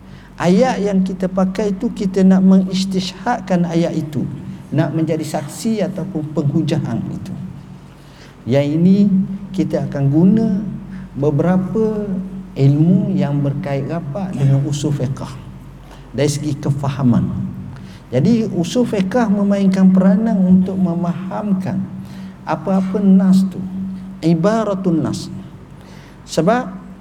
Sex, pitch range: male, 165-195 Hz